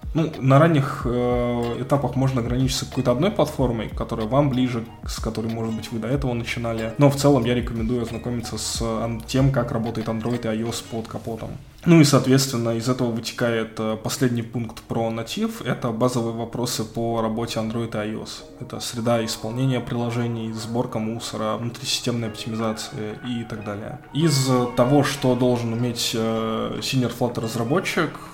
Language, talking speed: Russian, 155 wpm